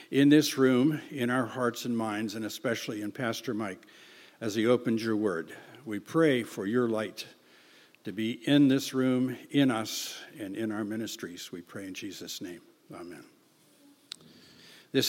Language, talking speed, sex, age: English, 165 wpm, male, 60-79